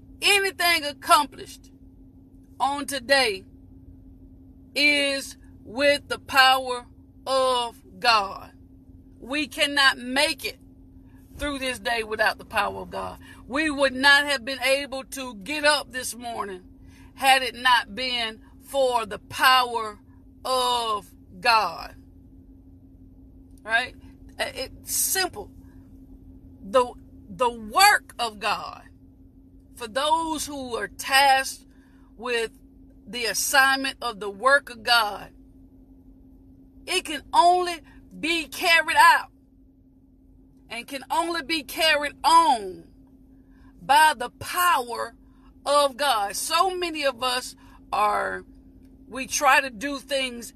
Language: English